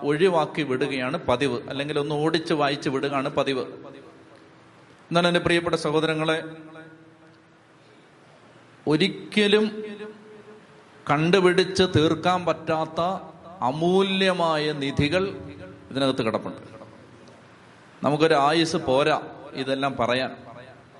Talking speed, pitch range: 75 wpm, 145-175 Hz